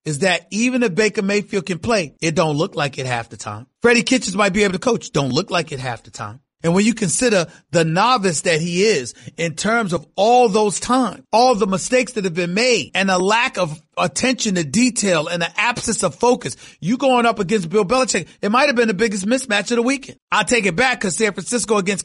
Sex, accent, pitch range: male, American, 170-225 Hz